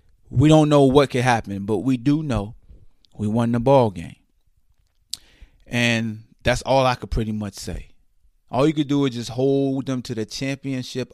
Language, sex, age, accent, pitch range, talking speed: English, male, 20-39, American, 110-140 Hz, 185 wpm